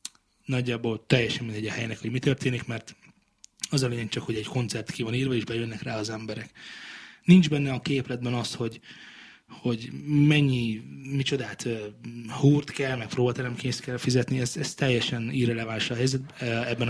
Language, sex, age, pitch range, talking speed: Hungarian, male, 20-39, 115-135 Hz, 155 wpm